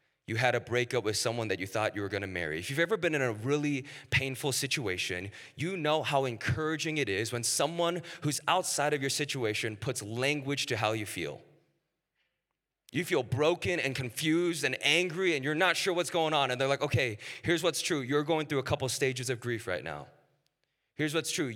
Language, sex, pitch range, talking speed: English, male, 120-160 Hz, 210 wpm